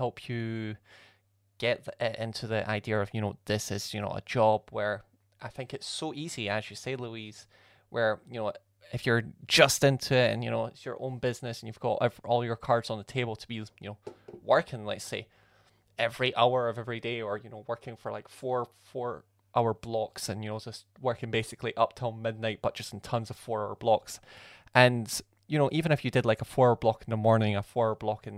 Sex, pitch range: male, 105-120 Hz